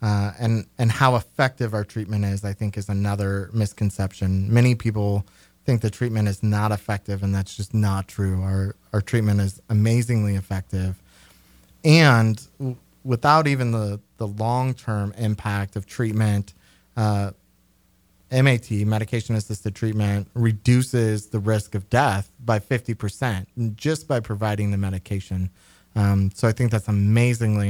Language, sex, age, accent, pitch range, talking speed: English, male, 30-49, American, 100-120 Hz, 145 wpm